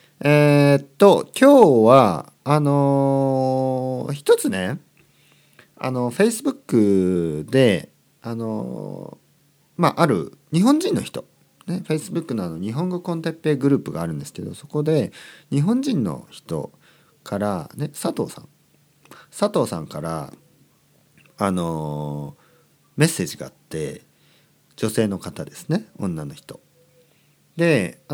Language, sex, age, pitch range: Japanese, male, 40-59, 110-165 Hz